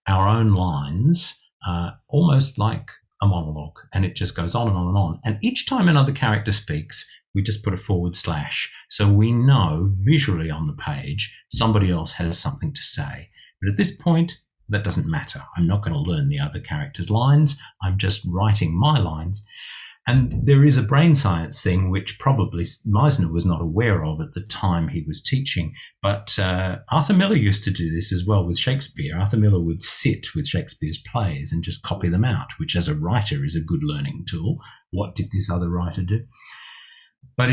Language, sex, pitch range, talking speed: English, male, 90-125 Hz, 195 wpm